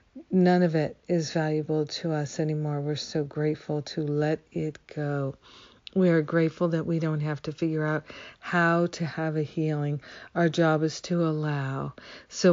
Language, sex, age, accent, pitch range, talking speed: English, female, 50-69, American, 150-170 Hz, 170 wpm